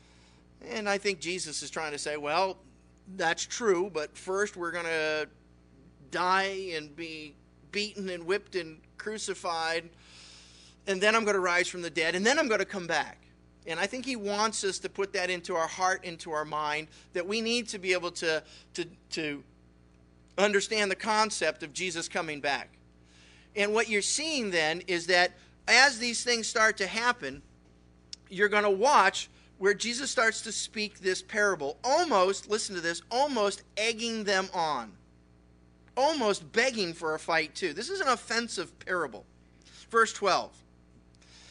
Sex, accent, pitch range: male, American, 130-200 Hz